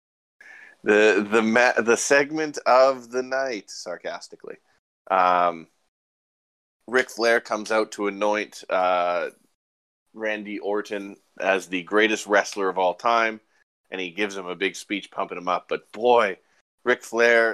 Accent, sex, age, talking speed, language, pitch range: American, male, 20-39, 135 wpm, English, 90-110 Hz